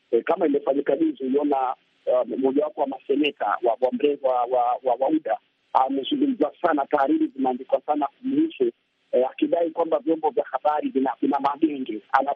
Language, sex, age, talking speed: Swahili, male, 50-69, 130 wpm